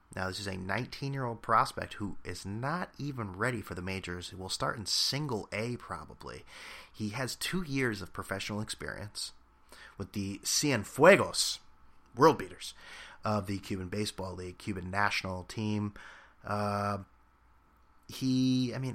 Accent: American